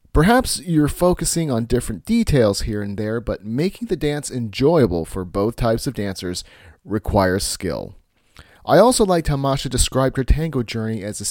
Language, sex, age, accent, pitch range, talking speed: English, male, 40-59, American, 105-150 Hz, 170 wpm